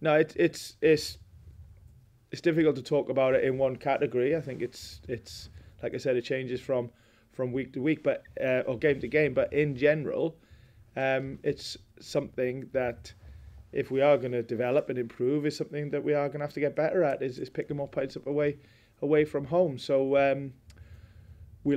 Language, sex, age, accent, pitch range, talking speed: English, male, 20-39, British, 120-145 Hz, 195 wpm